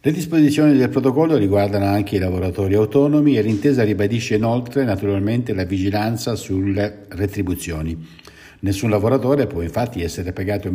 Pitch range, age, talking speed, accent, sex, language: 90-115 Hz, 60-79, 135 wpm, native, male, Italian